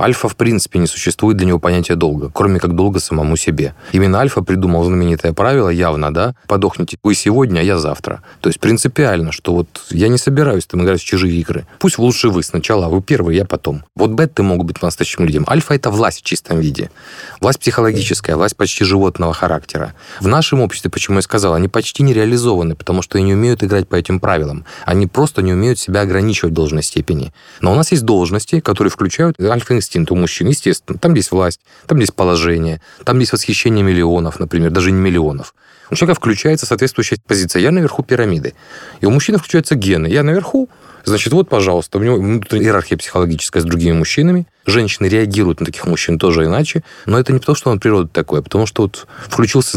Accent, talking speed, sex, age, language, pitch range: native, 200 wpm, male, 30-49, Russian, 85-120 Hz